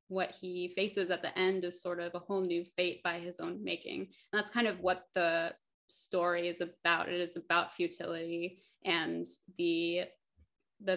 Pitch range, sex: 180-200 Hz, female